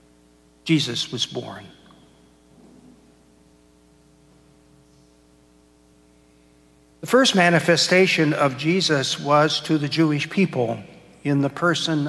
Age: 60-79